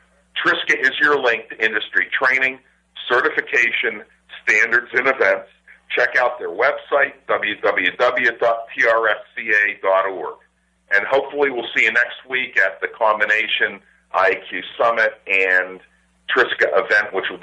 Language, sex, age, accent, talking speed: English, male, 50-69, American, 115 wpm